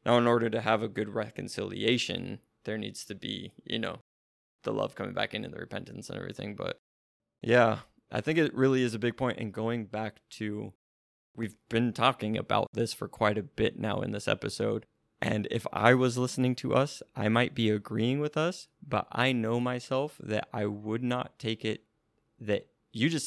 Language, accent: English, American